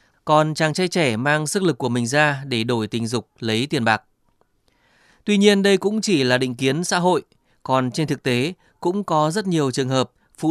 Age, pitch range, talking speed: 20-39, 125-160 Hz, 215 wpm